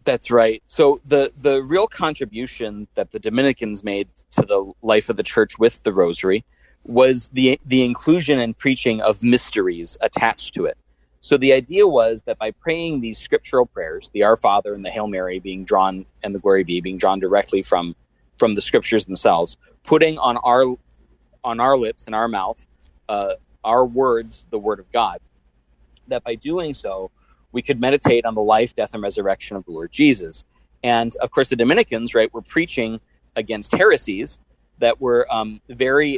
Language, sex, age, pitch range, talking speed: English, male, 30-49, 95-130 Hz, 180 wpm